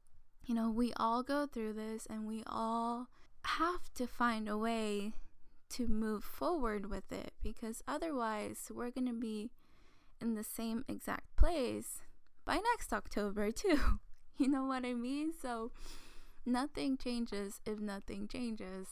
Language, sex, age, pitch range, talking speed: English, female, 10-29, 200-240 Hz, 145 wpm